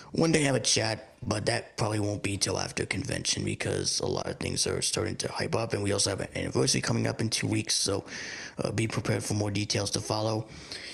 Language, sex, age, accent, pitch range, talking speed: English, male, 30-49, American, 100-115 Hz, 235 wpm